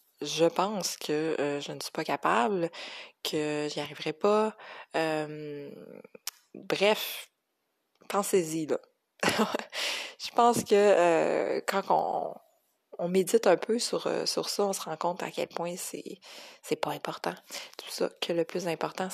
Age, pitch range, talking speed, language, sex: 20-39, 165-220 Hz, 145 wpm, French, female